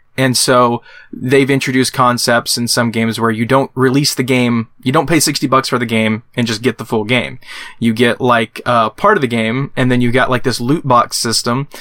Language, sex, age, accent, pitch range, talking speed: English, male, 20-39, American, 120-145 Hz, 230 wpm